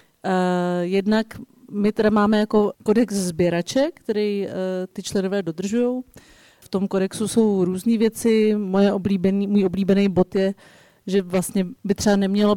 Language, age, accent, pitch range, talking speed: Czech, 30-49, native, 190-215 Hz, 145 wpm